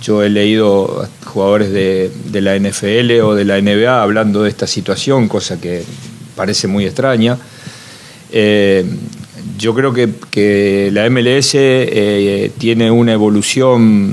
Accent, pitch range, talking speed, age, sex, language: Argentinian, 100-120 Hz, 135 wpm, 40-59, male, Spanish